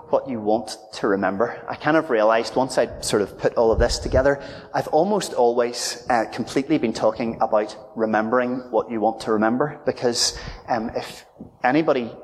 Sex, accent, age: male, British, 30-49